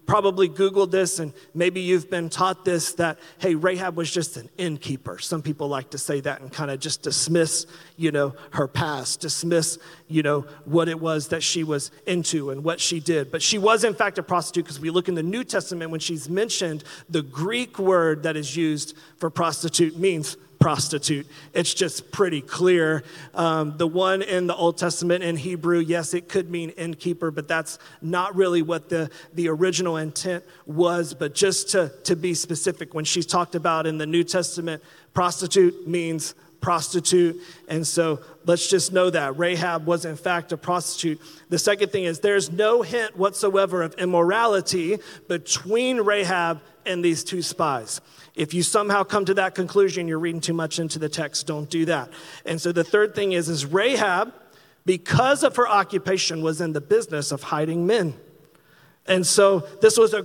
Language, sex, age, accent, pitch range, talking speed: English, male, 40-59, American, 160-185 Hz, 190 wpm